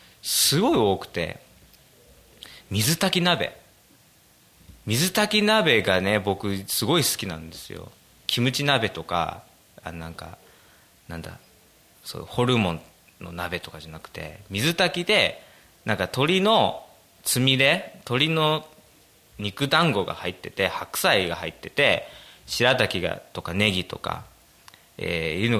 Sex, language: male, Japanese